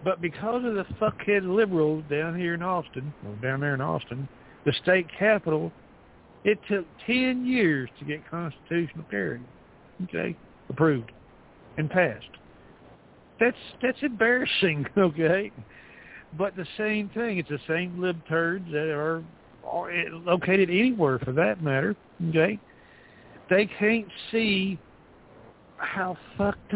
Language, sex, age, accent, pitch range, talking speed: English, male, 60-79, American, 145-190 Hz, 125 wpm